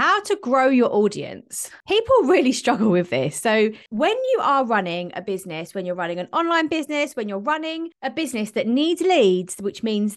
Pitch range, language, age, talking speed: 205-335 Hz, English, 20-39, 195 wpm